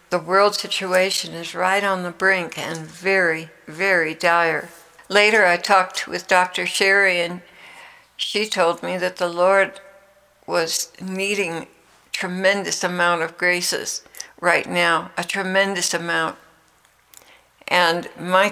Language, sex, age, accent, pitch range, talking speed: English, female, 60-79, American, 175-195 Hz, 125 wpm